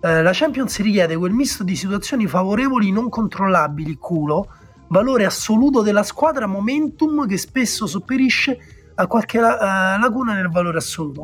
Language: Italian